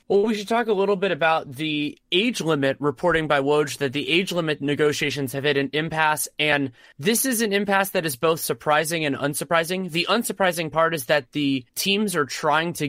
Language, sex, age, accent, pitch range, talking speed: English, male, 30-49, American, 140-170 Hz, 205 wpm